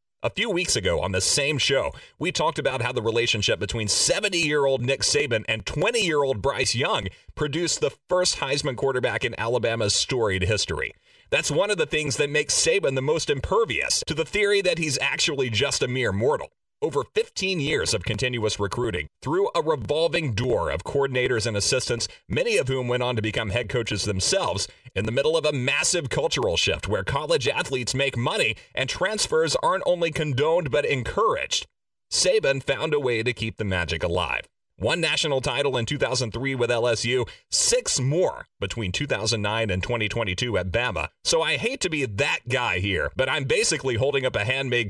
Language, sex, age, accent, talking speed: English, male, 30-49, American, 180 wpm